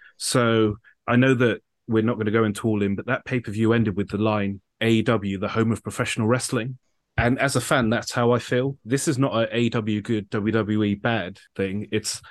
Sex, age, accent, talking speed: male, 30-49, British, 210 wpm